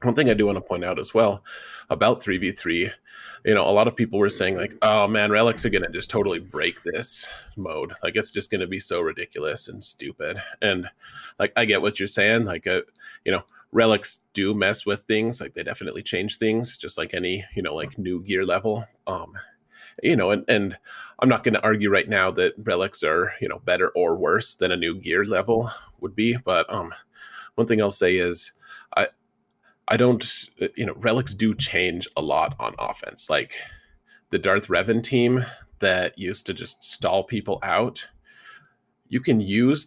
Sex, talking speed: male, 195 wpm